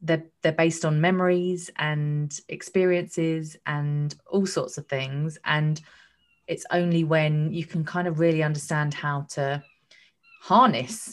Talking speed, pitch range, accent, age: 135 wpm, 140-160 Hz, British, 20-39